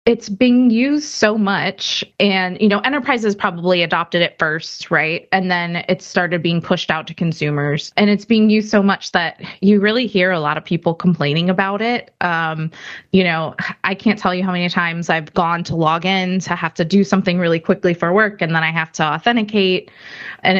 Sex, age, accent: female, 20-39, American